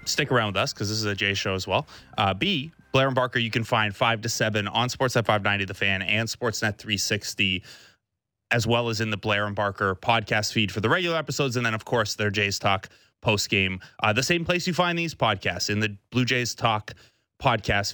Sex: male